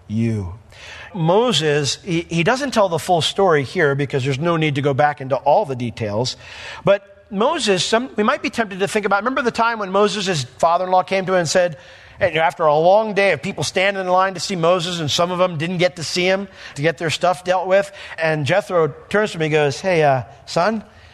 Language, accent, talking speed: English, American, 240 wpm